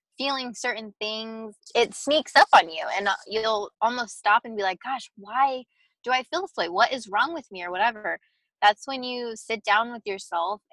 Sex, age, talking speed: female, 20-39, 200 wpm